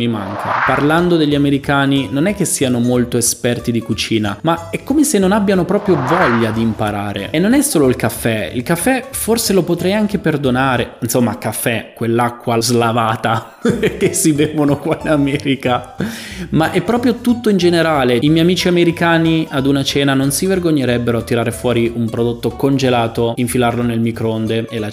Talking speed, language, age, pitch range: 175 wpm, Italian, 20-39, 120-165 Hz